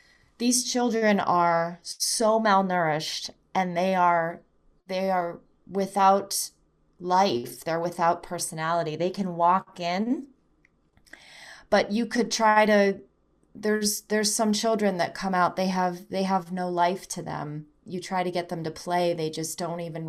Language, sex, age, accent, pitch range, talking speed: English, female, 30-49, American, 170-210 Hz, 145 wpm